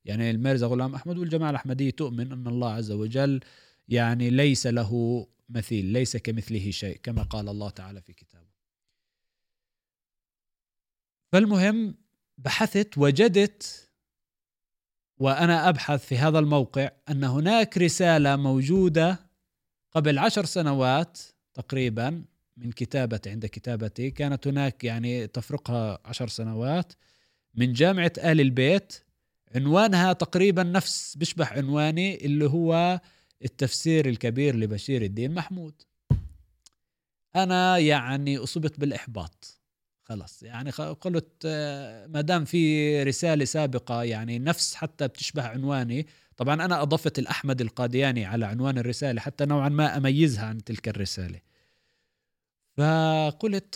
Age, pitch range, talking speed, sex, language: 30-49, 120-155 Hz, 110 wpm, male, Arabic